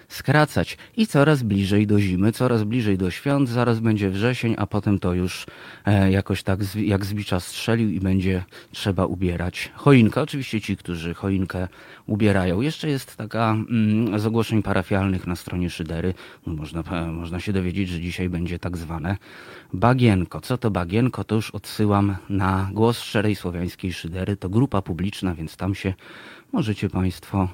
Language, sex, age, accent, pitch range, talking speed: Polish, male, 30-49, native, 95-120 Hz, 160 wpm